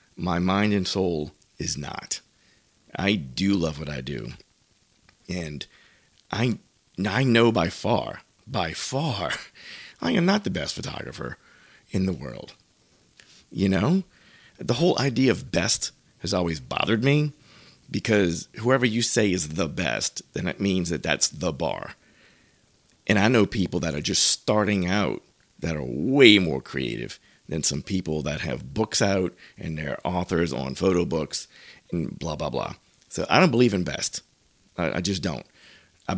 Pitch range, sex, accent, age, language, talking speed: 80-110 Hz, male, American, 30-49, English, 160 wpm